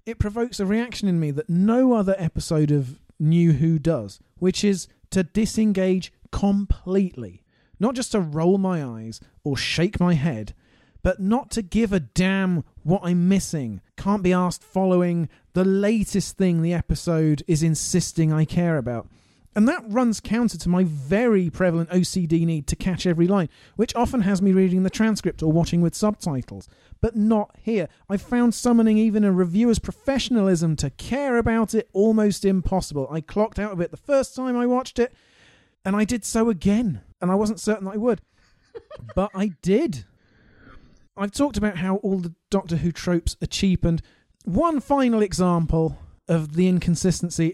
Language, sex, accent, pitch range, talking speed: English, male, British, 160-210 Hz, 175 wpm